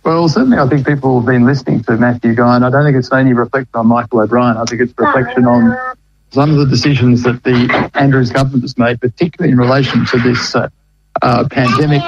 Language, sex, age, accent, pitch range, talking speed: English, male, 50-69, Australian, 125-145 Hz, 225 wpm